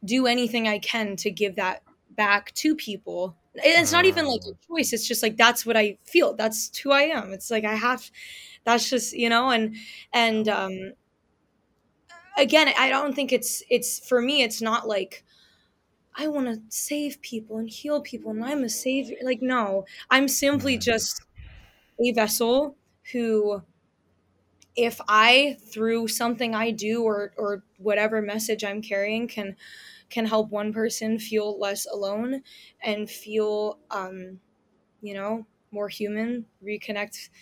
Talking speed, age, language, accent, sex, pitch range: 155 wpm, 20-39, English, American, female, 205-245 Hz